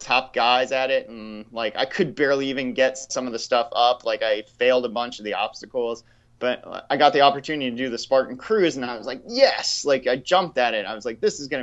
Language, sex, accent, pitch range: English, male, American, 115-135 Hz